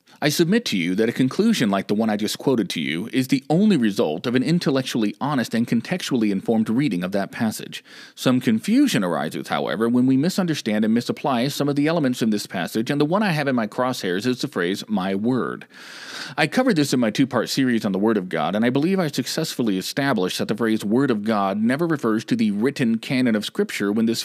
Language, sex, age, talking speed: English, male, 40-59, 230 wpm